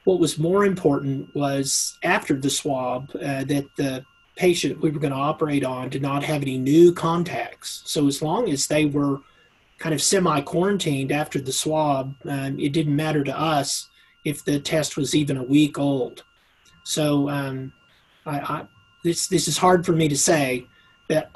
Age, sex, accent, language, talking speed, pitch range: 40-59, male, American, English, 180 wpm, 140-160 Hz